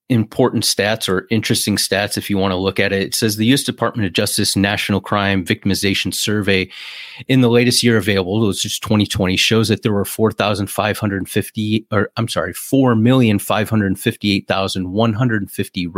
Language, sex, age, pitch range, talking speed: English, male, 30-49, 95-115 Hz, 145 wpm